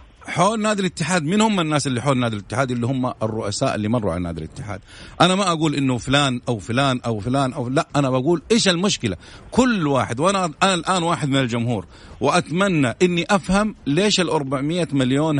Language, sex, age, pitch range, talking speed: English, male, 50-69, 130-170 Hz, 185 wpm